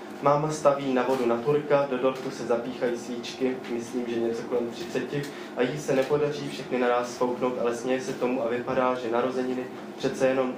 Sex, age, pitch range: male, 20-39, 115-130 Hz